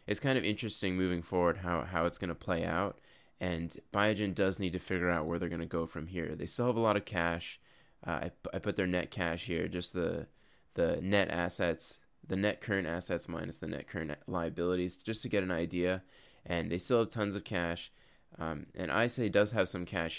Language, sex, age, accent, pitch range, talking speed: English, male, 20-39, American, 85-100 Hz, 225 wpm